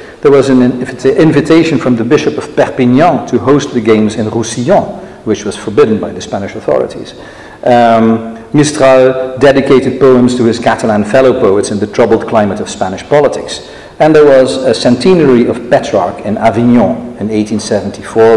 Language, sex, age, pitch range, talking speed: English, male, 50-69, 115-140 Hz, 160 wpm